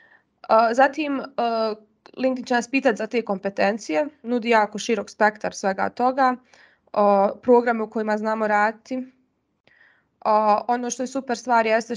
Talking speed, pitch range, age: 145 wpm, 205-245 Hz, 20-39